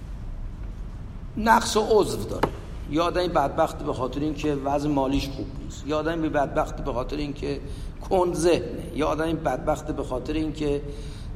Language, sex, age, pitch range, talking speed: English, male, 50-69, 105-165 Hz, 150 wpm